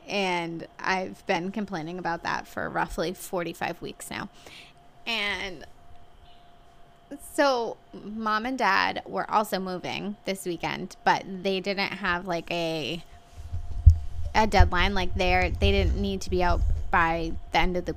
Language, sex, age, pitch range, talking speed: English, female, 20-39, 170-200 Hz, 140 wpm